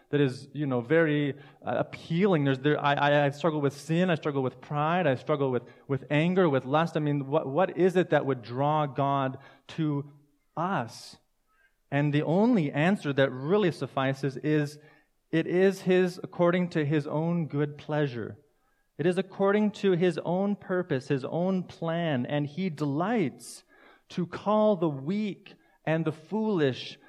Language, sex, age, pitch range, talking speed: English, male, 30-49, 135-180 Hz, 165 wpm